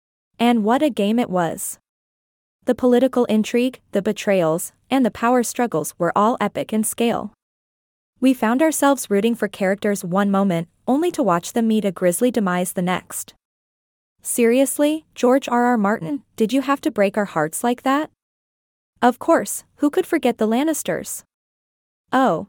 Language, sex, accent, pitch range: English, female, American, 195-250 Hz